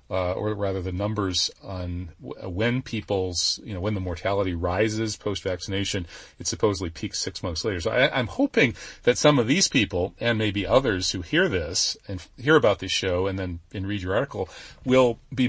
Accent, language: American, English